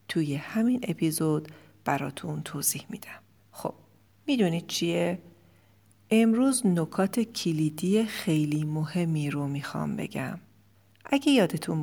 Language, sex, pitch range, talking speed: Persian, female, 155-200 Hz, 95 wpm